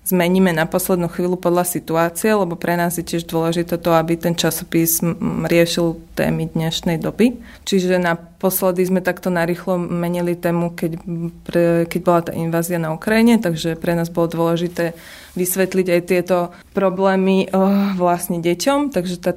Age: 20-39